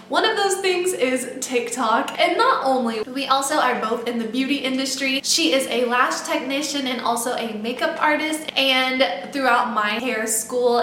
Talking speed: 175 wpm